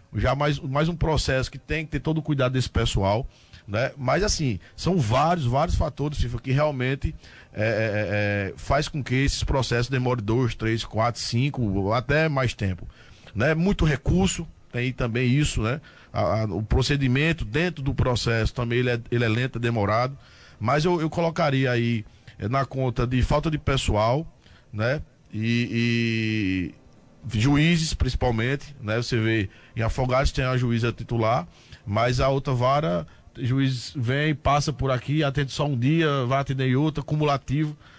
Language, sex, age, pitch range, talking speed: Portuguese, male, 20-39, 115-145 Hz, 165 wpm